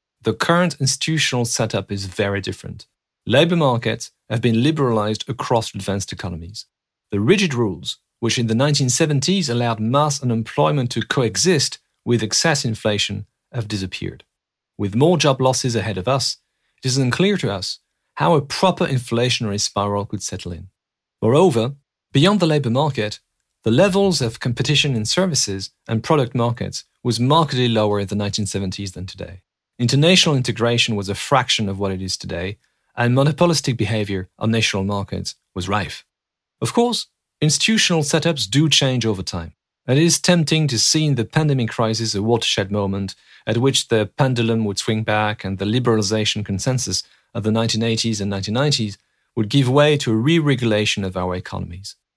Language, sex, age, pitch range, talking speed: English, male, 40-59, 105-140 Hz, 160 wpm